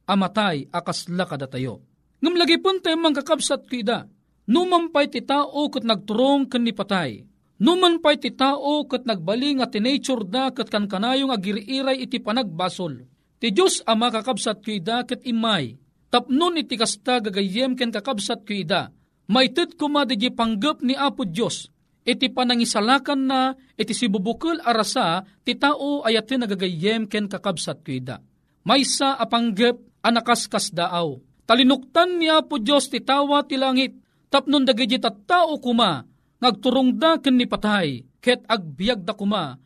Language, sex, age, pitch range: Filipino, male, 40-59, 210-280 Hz